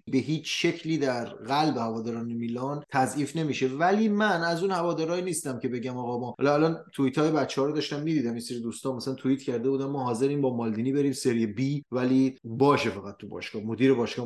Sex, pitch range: male, 125-150 Hz